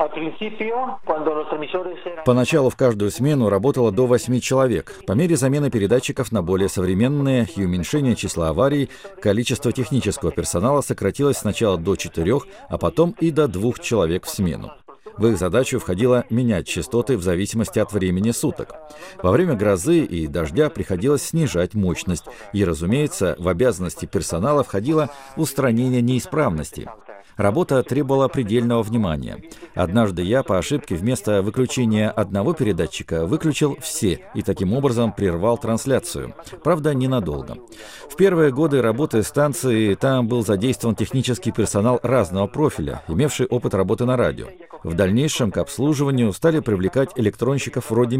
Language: Russian